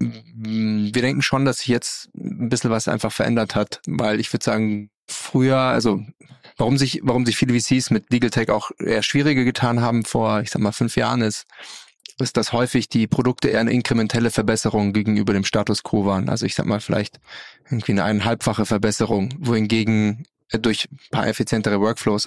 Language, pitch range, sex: German, 105-125 Hz, male